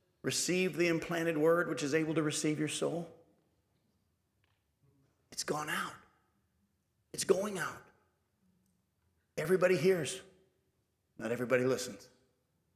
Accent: American